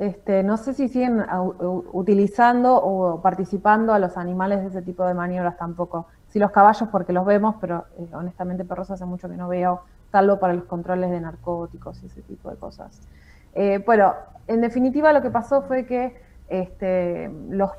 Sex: female